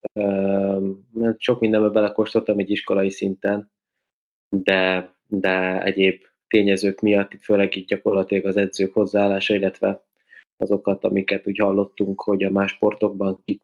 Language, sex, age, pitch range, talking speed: Hungarian, male, 20-39, 100-110 Hz, 120 wpm